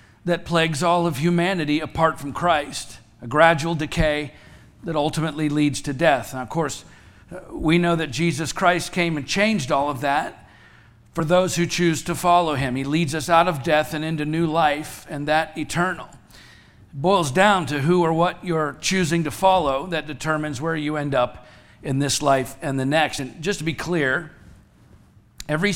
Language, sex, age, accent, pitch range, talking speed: English, male, 50-69, American, 140-170 Hz, 180 wpm